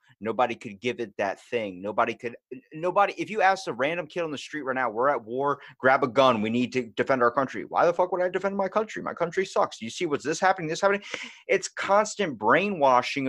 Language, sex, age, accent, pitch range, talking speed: English, male, 30-49, American, 125-185 Hz, 240 wpm